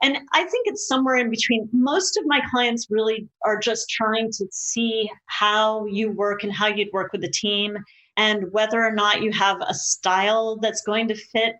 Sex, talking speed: female, 200 wpm